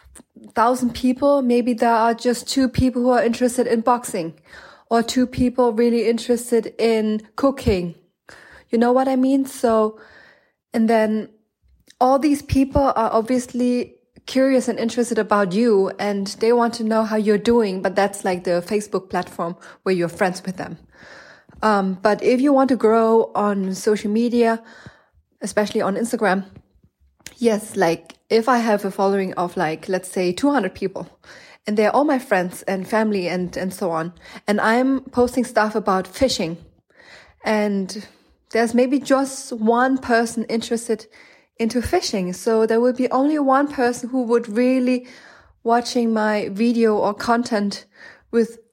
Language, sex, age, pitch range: English, female, 20-39, 205-245 Hz